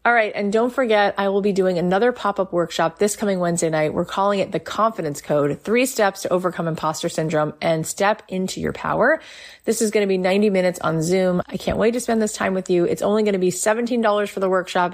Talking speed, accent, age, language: 240 wpm, American, 30-49, English